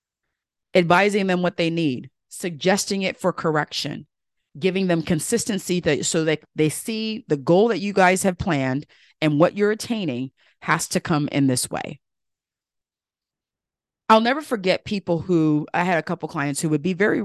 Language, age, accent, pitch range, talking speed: English, 40-59, American, 140-180 Hz, 165 wpm